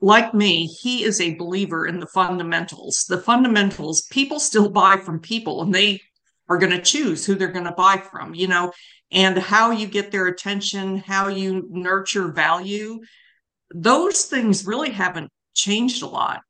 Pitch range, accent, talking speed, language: 180-220 Hz, American, 170 wpm, English